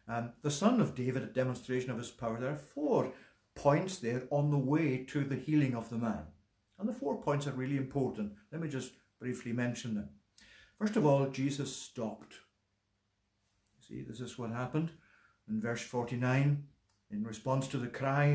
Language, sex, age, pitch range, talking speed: English, male, 60-79, 120-150 Hz, 180 wpm